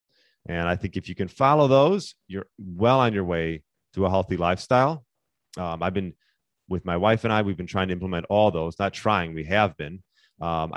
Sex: male